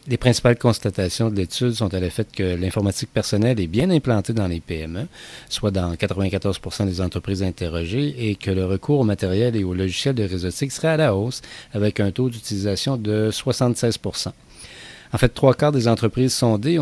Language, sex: French, male